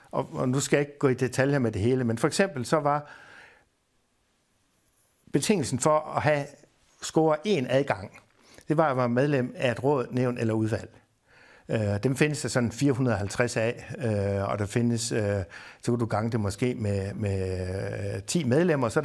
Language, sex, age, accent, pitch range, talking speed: Danish, male, 60-79, native, 115-150 Hz, 165 wpm